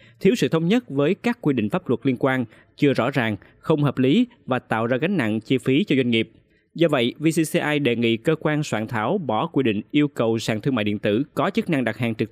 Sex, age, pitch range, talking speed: male, 20-39, 125-155 Hz, 260 wpm